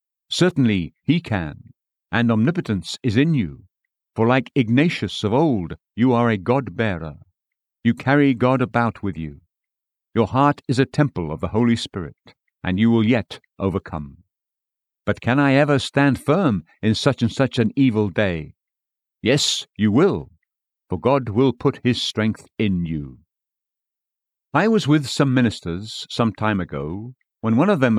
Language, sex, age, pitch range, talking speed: English, male, 60-79, 100-135 Hz, 155 wpm